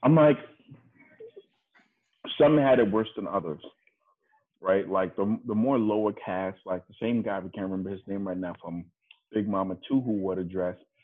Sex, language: male, English